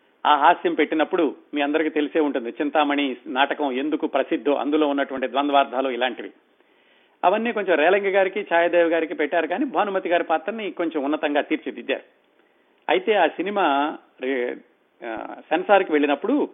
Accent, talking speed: native, 125 wpm